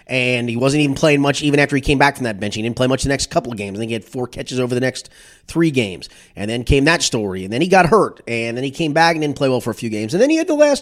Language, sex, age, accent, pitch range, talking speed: English, male, 30-49, American, 125-160 Hz, 350 wpm